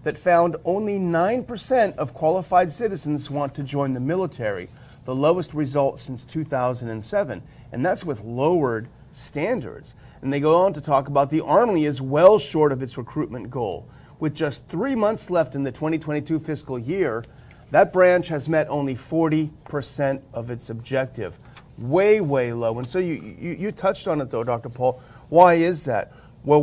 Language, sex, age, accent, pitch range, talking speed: English, male, 40-59, American, 125-165 Hz, 170 wpm